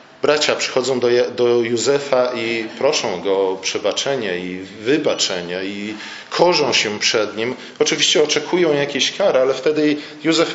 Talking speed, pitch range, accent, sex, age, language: 140 wpm, 125-150 Hz, native, male, 40-59, Polish